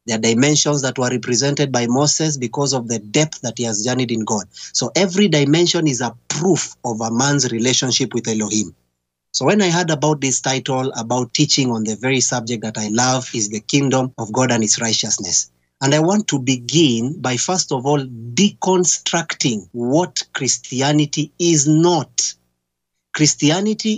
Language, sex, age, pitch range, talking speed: English, male, 30-49, 120-160 Hz, 175 wpm